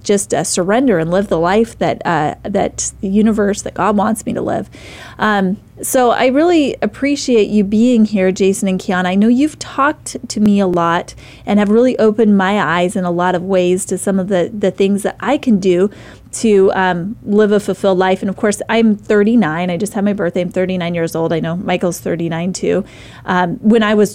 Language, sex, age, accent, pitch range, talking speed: English, female, 30-49, American, 180-215 Hz, 215 wpm